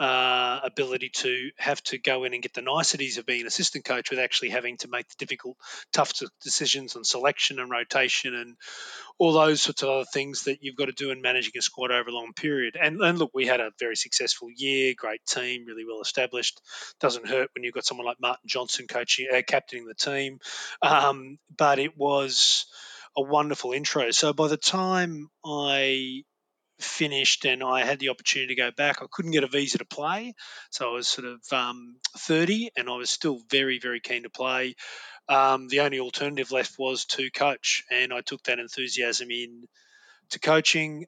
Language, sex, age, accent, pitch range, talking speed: English, male, 30-49, Australian, 125-145 Hz, 200 wpm